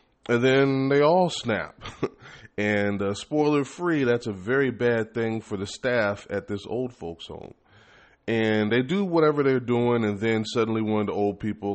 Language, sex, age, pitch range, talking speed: English, male, 30-49, 95-120 Hz, 190 wpm